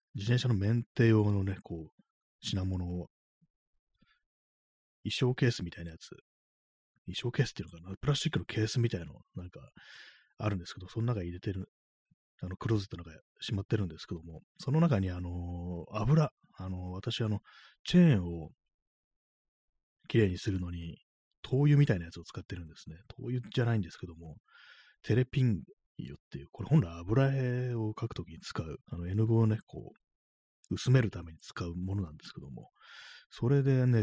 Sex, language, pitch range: male, Japanese, 85-115 Hz